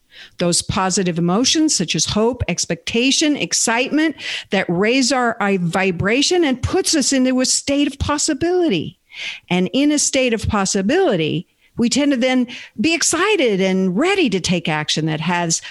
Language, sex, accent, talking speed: English, female, American, 150 wpm